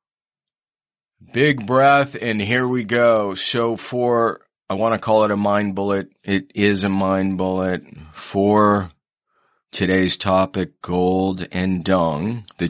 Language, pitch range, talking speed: English, 95-110 Hz, 130 wpm